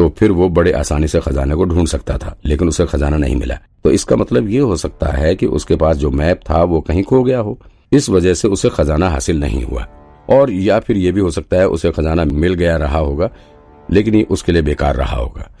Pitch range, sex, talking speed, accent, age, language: 75-95 Hz, male, 210 wpm, native, 50-69, Hindi